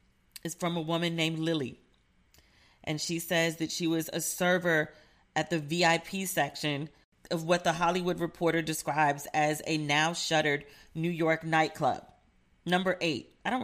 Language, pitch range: English, 160-185 Hz